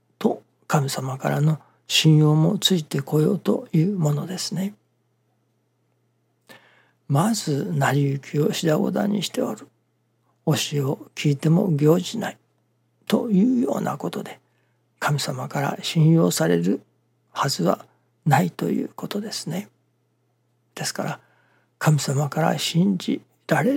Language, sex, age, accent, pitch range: Japanese, male, 60-79, native, 135-185 Hz